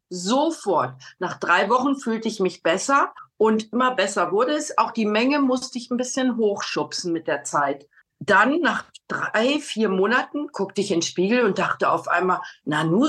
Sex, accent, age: female, German, 50-69